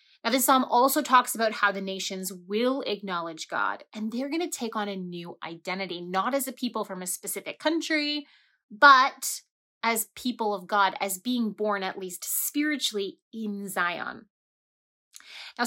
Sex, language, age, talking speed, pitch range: female, English, 30-49, 165 wpm, 190-255 Hz